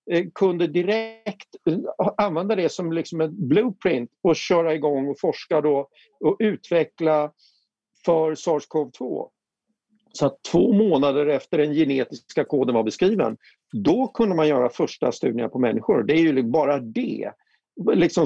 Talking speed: 140 wpm